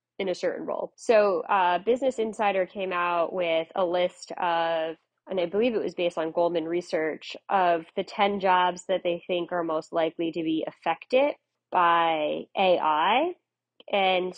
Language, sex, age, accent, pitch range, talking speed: English, female, 20-39, American, 170-210 Hz, 165 wpm